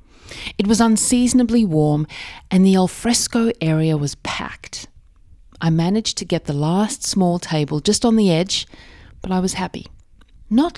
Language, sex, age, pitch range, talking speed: English, female, 40-59, 150-220 Hz, 150 wpm